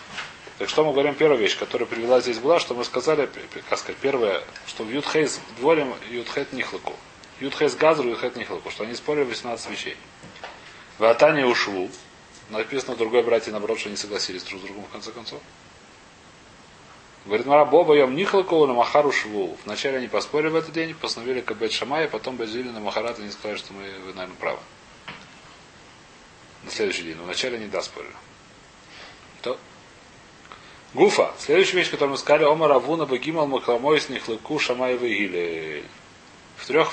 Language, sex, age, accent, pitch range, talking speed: Russian, male, 30-49, native, 110-150 Hz, 155 wpm